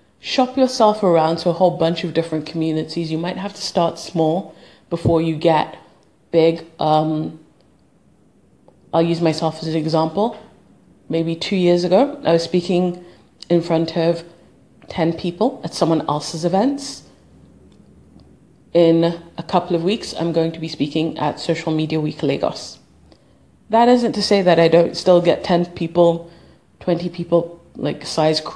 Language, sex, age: English, female, 30-49